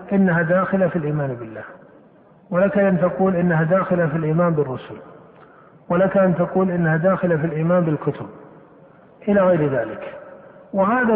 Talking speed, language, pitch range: 135 wpm, Arabic, 170-195 Hz